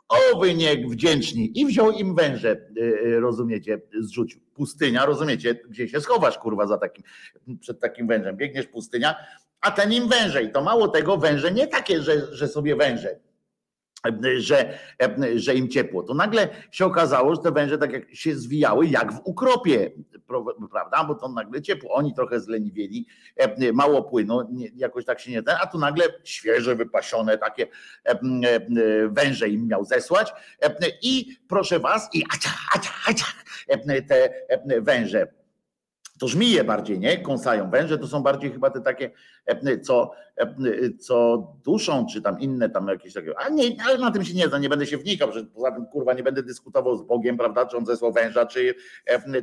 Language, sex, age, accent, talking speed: Polish, male, 50-69, native, 165 wpm